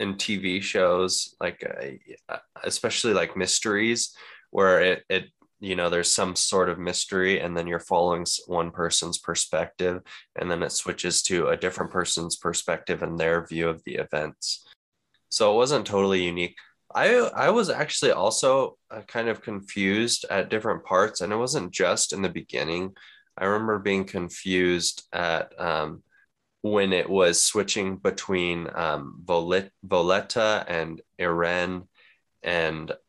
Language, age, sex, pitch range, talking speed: English, 20-39, male, 85-110 Hz, 145 wpm